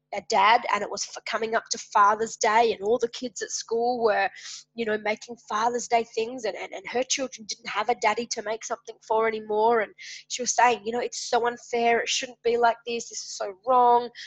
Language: English